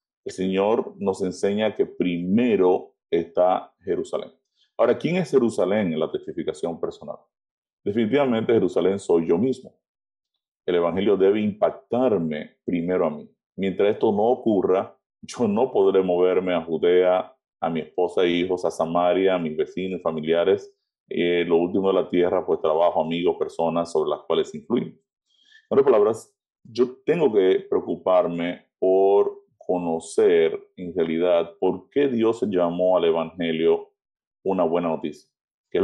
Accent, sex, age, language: Venezuelan, male, 30-49, Spanish